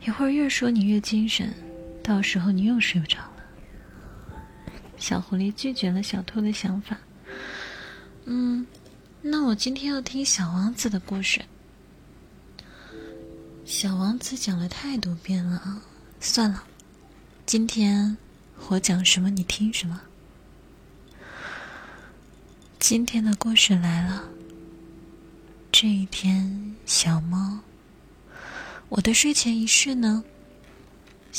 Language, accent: Chinese, native